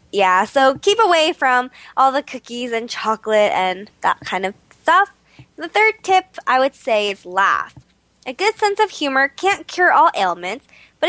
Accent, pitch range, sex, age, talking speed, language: American, 230-385 Hz, female, 20-39, 180 wpm, English